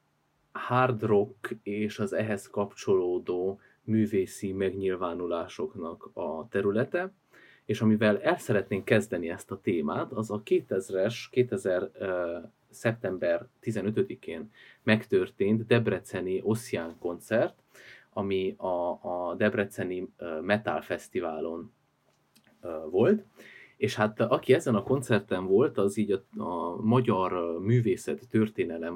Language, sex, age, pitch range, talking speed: Hungarian, male, 30-49, 95-115 Hz, 110 wpm